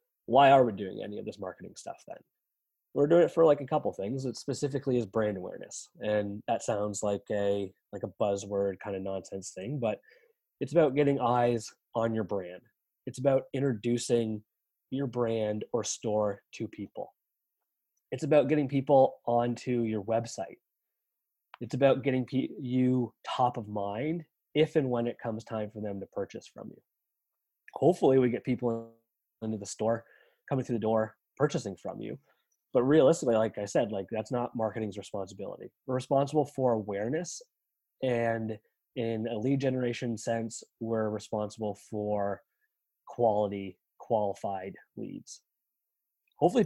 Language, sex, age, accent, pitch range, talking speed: English, male, 20-39, American, 110-140 Hz, 150 wpm